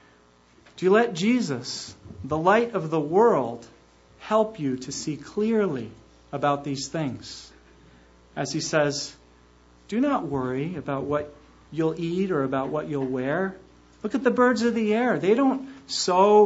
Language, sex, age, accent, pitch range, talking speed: English, male, 40-59, American, 130-200 Hz, 155 wpm